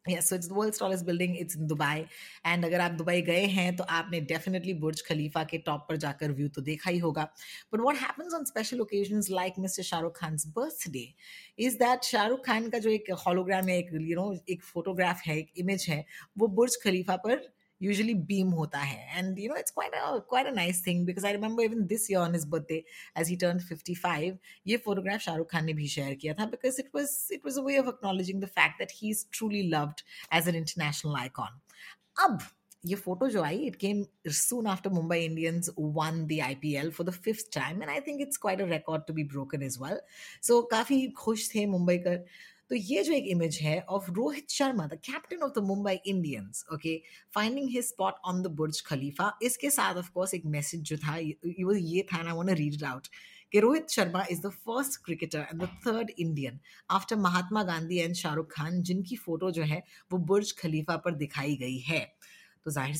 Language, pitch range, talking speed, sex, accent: Hindi, 160-210 Hz, 190 wpm, female, native